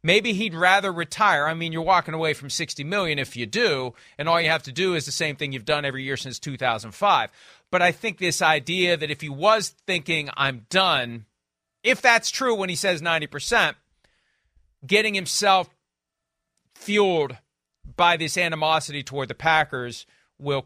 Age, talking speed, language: 40-59, 175 wpm, English